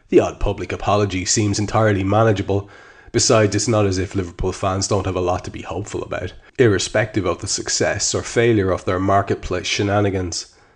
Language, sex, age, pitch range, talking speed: English, male, 30-49, 95-110 Hz, 180 wpm